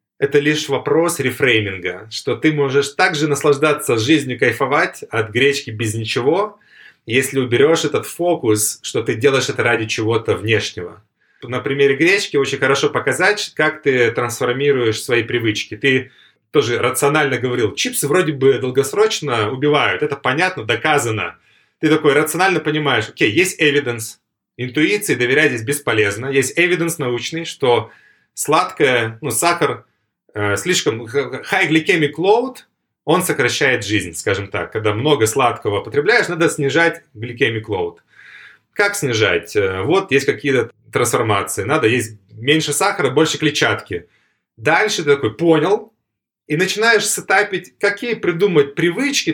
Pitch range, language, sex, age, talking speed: 120-170 Hz, Russian, male, 30-49, 130 wpm